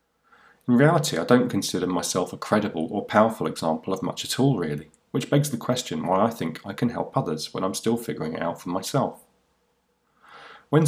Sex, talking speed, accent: male, 200 wpm, British